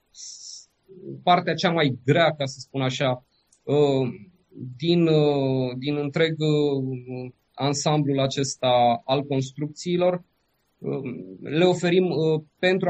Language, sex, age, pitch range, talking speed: Romanian, male, 20-39, 135-165 Hz, 85 wpm